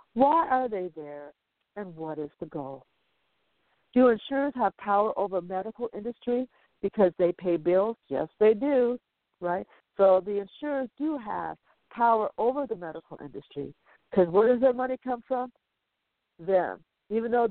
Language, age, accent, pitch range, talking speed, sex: English, 60-79, American, 175-255 Hz, 150 wpm, female